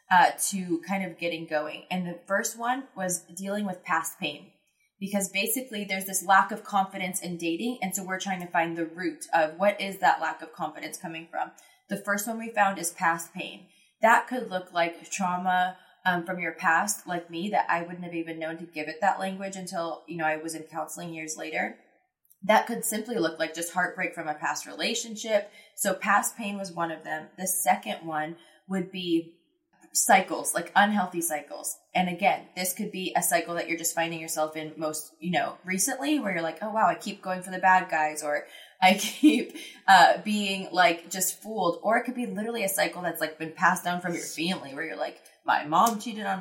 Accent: American